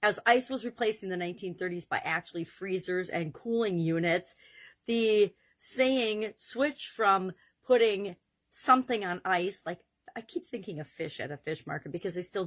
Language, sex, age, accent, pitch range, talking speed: English, female, 40-59, American, 175-225 Hz, 165 wpm